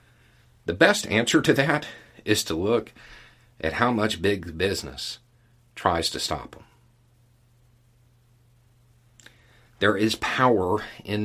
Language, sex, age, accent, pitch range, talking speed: English, male, 50-69, American, 90-120 Hz, 110 wpm